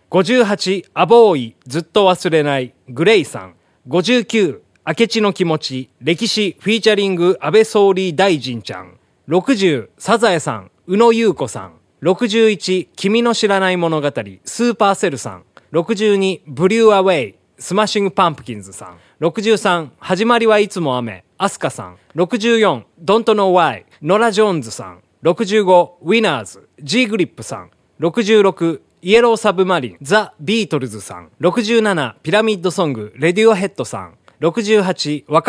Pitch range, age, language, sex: 135-215 Hz, 20-39, Japanese, male